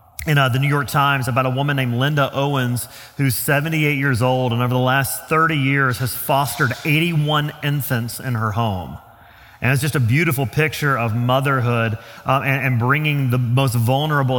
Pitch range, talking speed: 130-160 Hz, 185 wpm